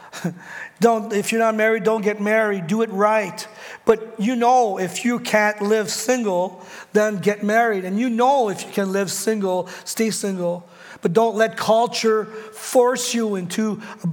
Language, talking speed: English, 170 wpm